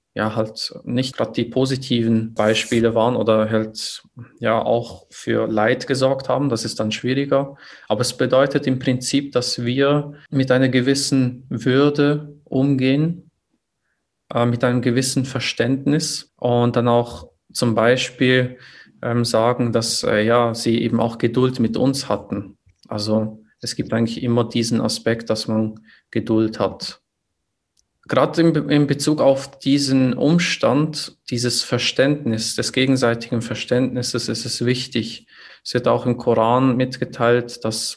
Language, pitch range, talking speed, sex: German, 110-130 Hz, 135 wpm, male